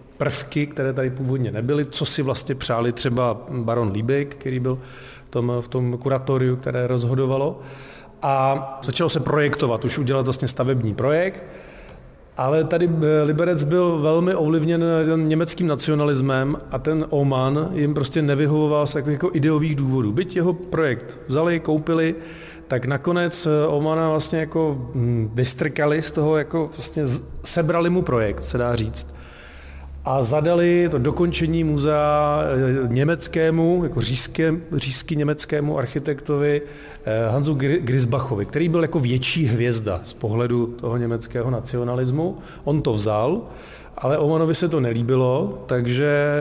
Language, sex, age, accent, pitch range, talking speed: Czech, male, 40-59, native, 125-160 Hz, 130 wpm